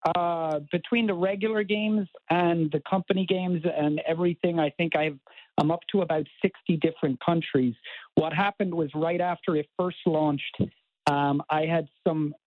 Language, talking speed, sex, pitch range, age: English, 155 wpm, male, 140-170 Hz, 50-69